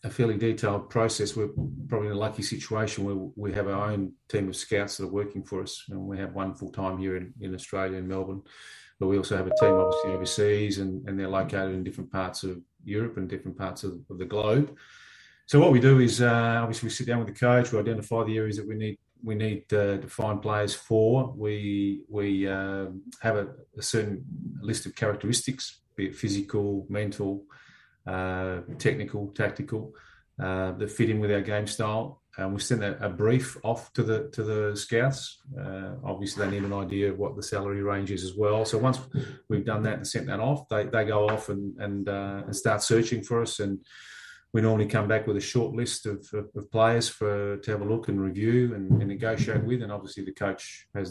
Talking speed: 220 wpm